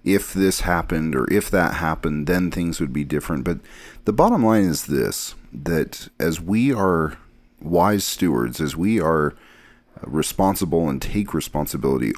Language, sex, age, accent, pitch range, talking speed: English, male, 40-59, American, 75-90 Hz, 155 wpm